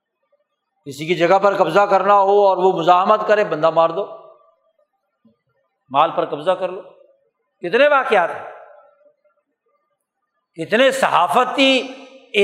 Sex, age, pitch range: male, 60-79, 190-280 Hz